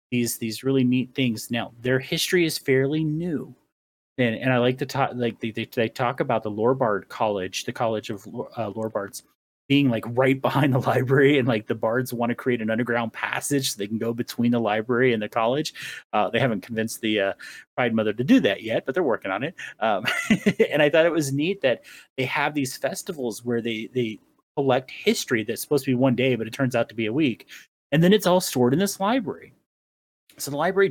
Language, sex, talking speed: English, male, 225 wpm